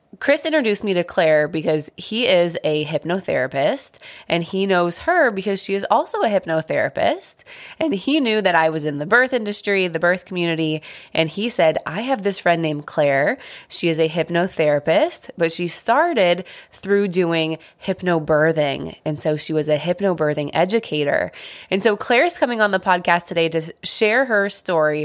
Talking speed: 170 wpm